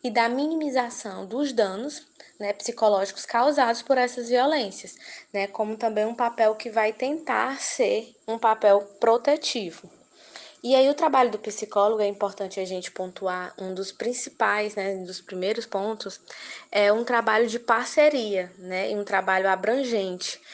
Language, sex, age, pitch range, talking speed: Portuguese, female, 20-39, 200-245 Hz, 150 wpm